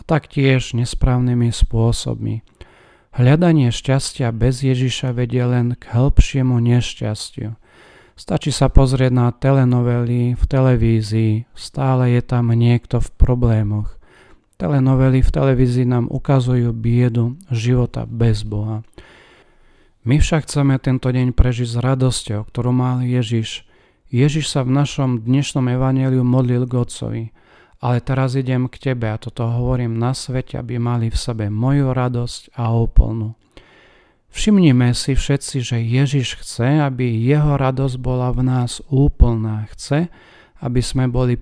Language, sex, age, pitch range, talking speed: Slovak, male, 40-59, 115-135 Hz, 125 wpm